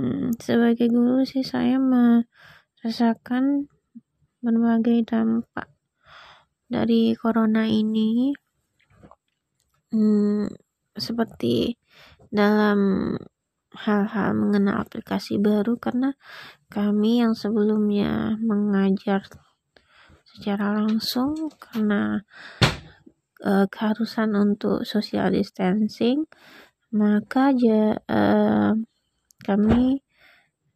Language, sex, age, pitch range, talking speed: Indonesian, female, 20-39, 210-235 Hz, 65 wpm